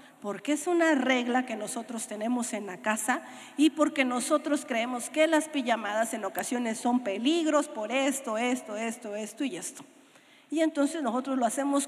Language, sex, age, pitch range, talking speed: Spanish, female, 40-59, 250-310 Hz, 165 wpm